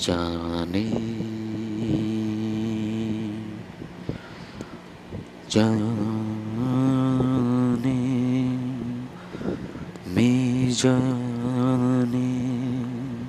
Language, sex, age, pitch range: Bengali, male, 30-49, 110-145 Hz